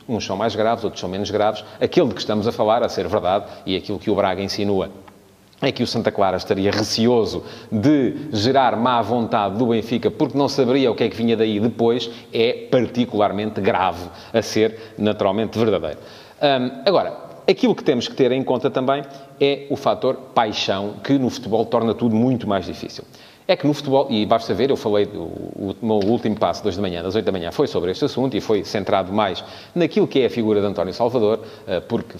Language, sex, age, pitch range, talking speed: English, male, 30-49, 105-140 Hz, 215 wpm